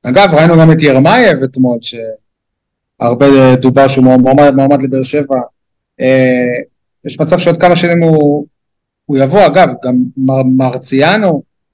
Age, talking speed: 20-39, 130 wpm